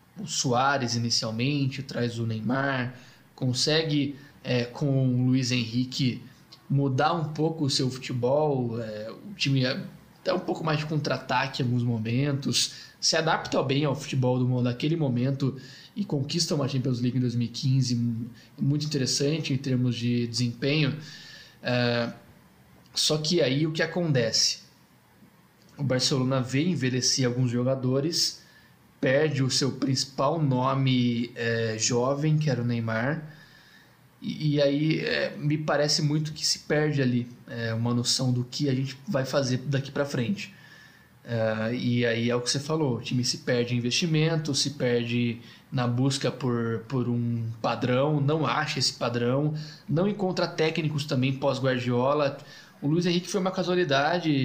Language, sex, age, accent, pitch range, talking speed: Portuguese, male, 20-39, Brazilian, 125-150 Hz, 150 wpm